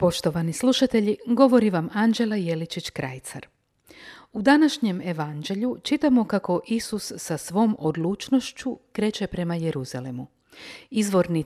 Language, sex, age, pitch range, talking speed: Croatian, female, 50-69, 170-235 Hz, 105 wpm